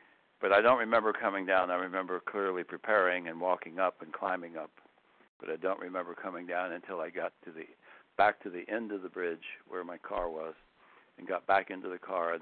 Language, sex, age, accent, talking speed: English, male, 60-79, American, 215 wpm